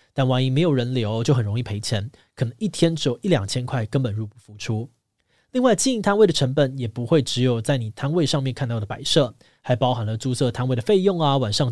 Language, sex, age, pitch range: Chinese, male, 20-39, 115-155 Hz